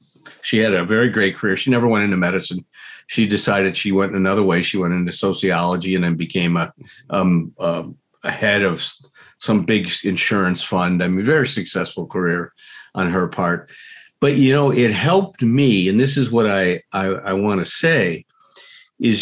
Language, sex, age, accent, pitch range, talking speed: English, male, 50-69, American, 100-145 Hz, 170 wpm